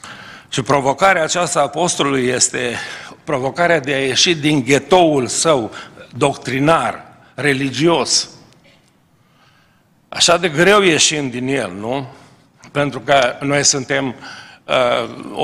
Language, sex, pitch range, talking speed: Romanian, male, 120-140 Hz, 105 wpm